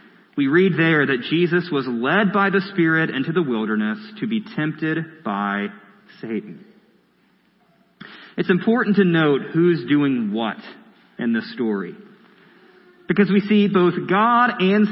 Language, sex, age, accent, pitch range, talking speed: English, male, 30-49, American, 145-205 Hz, 135 wpm